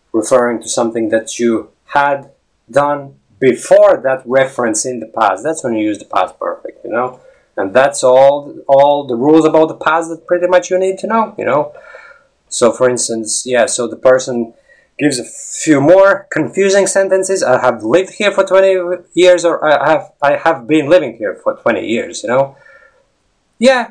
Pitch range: 125-190 Hz